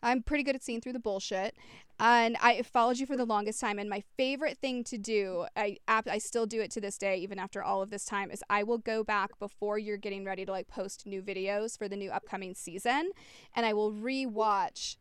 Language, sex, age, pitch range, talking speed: English, female, 20-39, 200-270 Hz, 235 wpm